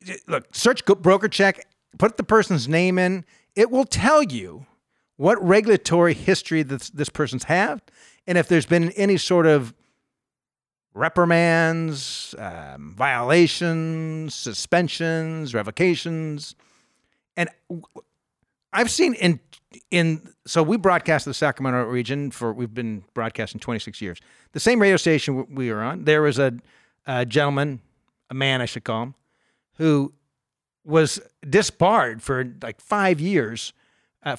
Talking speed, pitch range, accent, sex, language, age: 125 wpm, 125-175 Hz, American, male, English, 50-69